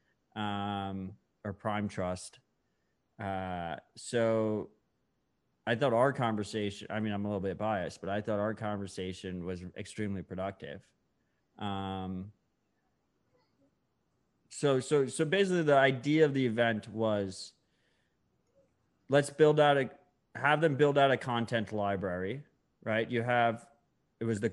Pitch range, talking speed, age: 105-125 Hz, 130 wpm, 20-39